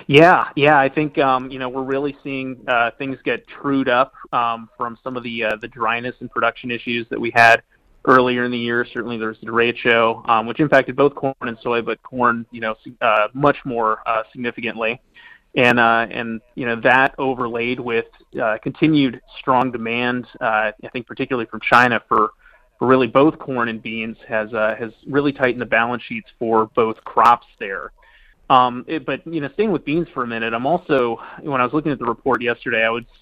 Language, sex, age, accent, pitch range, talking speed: English, male, 30-49, American, 115-130 Hz, 205 wpm